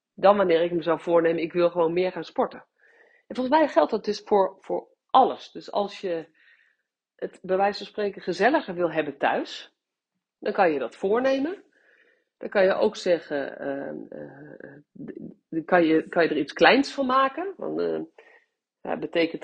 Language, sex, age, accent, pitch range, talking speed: Dutch, female, 40-59, Dutch, 165-255 Hz, 180 wpm